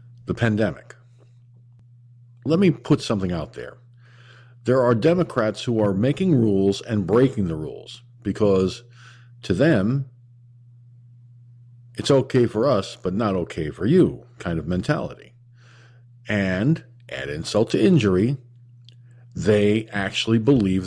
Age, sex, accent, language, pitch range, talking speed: 50-69, male, American, English, 110-125 Hz, 120 wpm